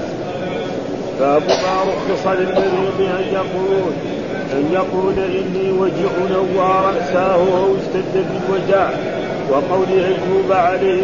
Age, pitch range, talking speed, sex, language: 40-59, 185-190 Hz, 100 wpm, male, Arabic